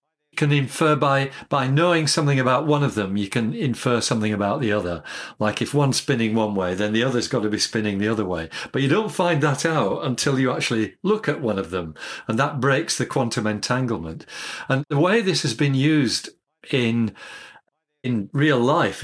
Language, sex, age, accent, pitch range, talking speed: English, male, 50-69, British, 115-145 Hz, 200 wpm